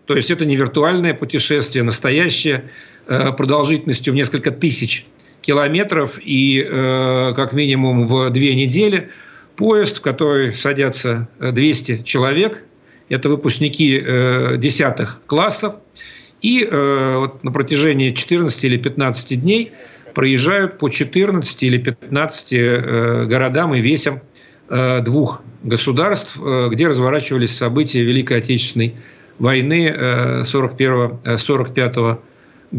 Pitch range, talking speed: 130-155 Hz, 95 wpm